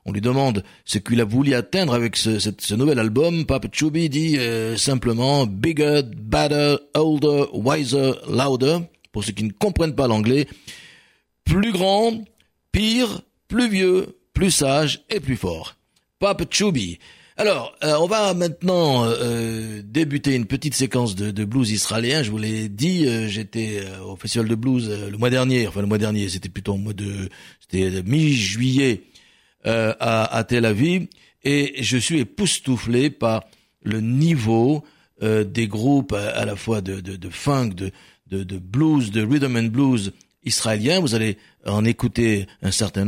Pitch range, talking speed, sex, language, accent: 110-150 Hz, 175 wpm, male, French, French